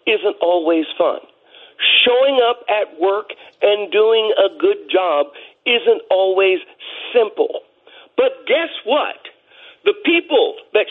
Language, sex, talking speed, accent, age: English, male, 115 wpm, American, 50-69